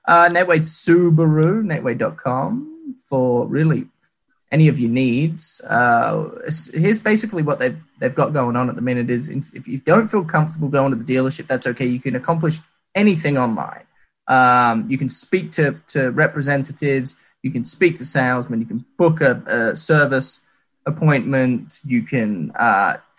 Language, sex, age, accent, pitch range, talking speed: English, male, 10-29, Australian, 130-175 Hz, 160 wpm